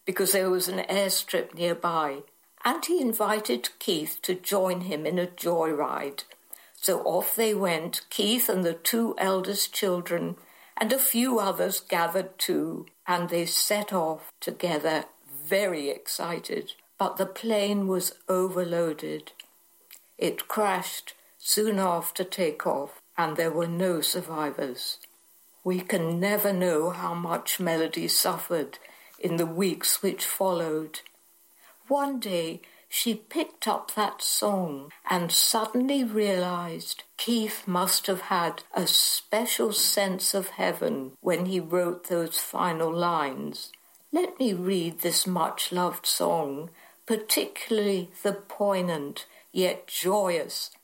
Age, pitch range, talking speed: 60-79, 170-200 Hz, 120 wpm